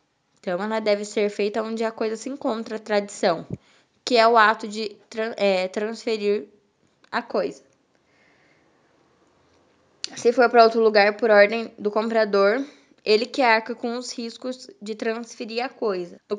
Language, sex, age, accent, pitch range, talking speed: Portuguese, female, 10-29, Brazilian, 205-240 Hz, 155 wpm